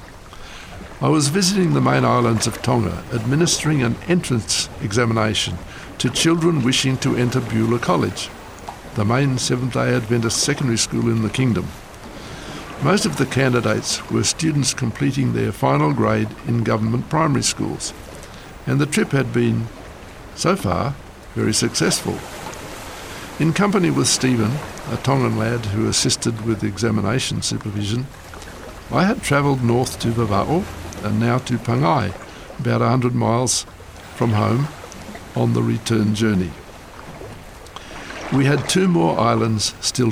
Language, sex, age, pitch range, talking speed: English, male, 60-79, 110-130 Hz, 130 wpm